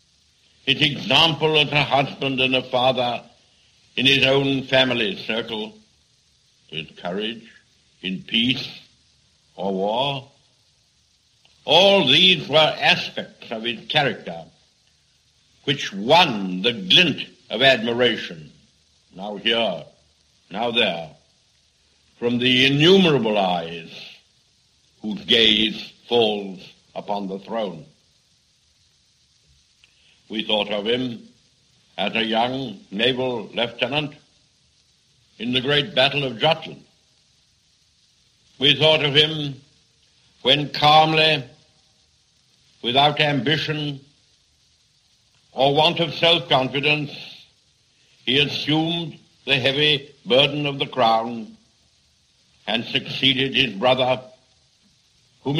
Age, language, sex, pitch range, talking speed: 70-89, English, male, 115-145 Hz, 95 wpm